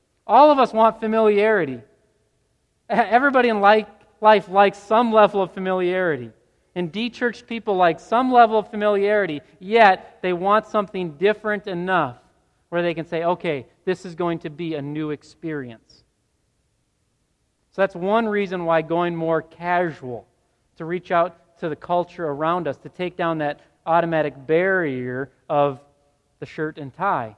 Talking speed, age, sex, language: 150 wpm, 40-59, male, English